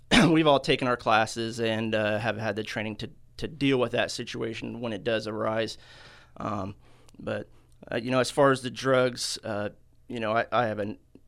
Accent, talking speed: American, 200 wpm